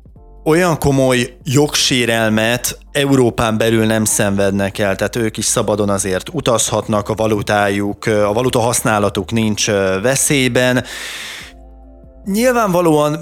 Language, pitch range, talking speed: Hungarian, 100-125 Hz, 100 wpm